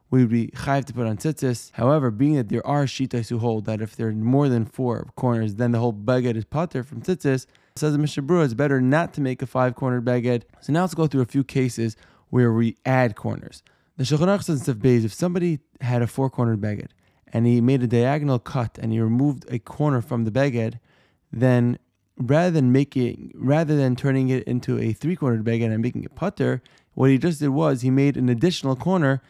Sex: male